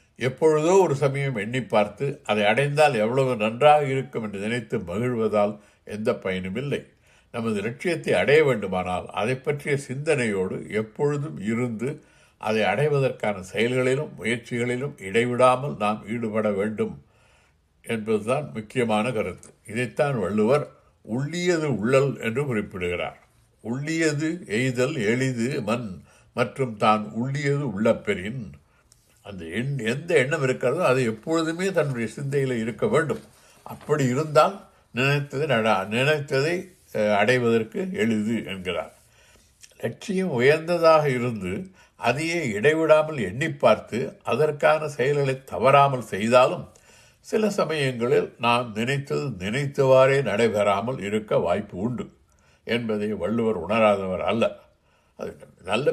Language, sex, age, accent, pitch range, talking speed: Tamil, male, 60-79, native, 110-145 Hz, 100 wpm